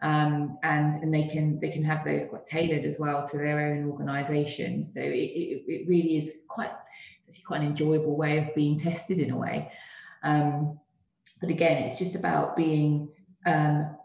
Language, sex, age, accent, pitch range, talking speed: English, female, 20-39, British, 150-165 Hz, 185 wpm